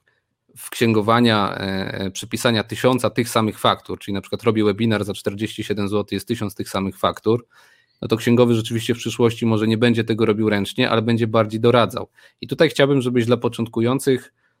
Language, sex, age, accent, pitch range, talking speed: Polish, male, 40-59, native, 110-125 Hz, 175 wpm